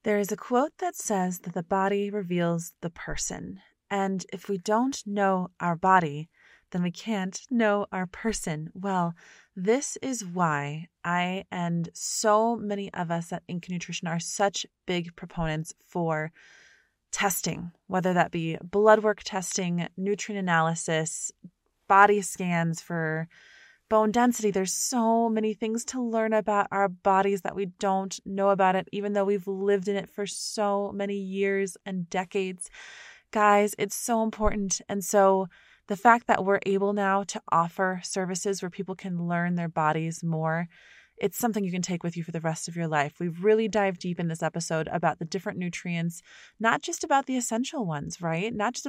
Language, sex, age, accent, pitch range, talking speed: English, female, 20-39, American, 175-210 Hz, 170 wpm